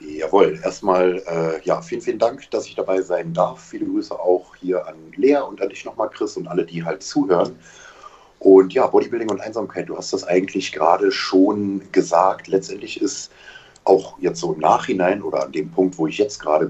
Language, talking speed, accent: German, 195 wpm, German